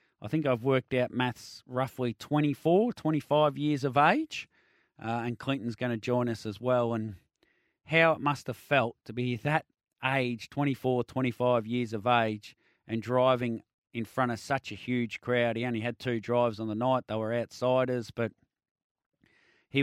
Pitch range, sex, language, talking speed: 115-145 Hz, male, English, 175 wpm